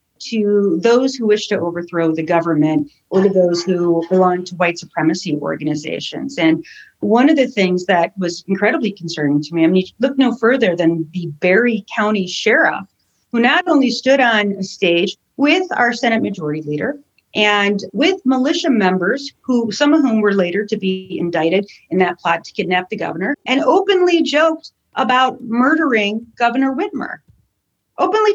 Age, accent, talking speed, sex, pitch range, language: 40-59, American, 165 wpm, female, 180-280 Hz, English